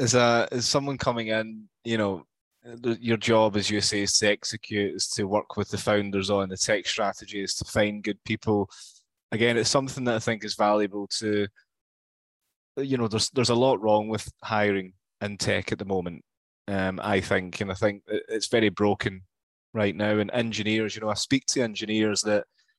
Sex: male